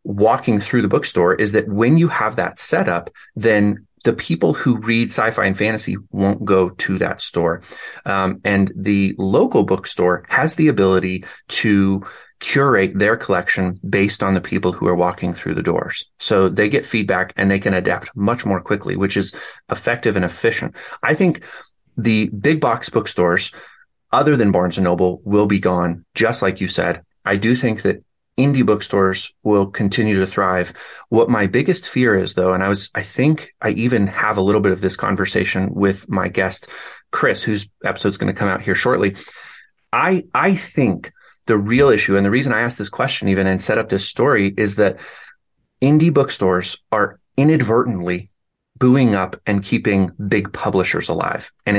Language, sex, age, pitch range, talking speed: English, male, 30-49, 95-115 Hz, 180 wpm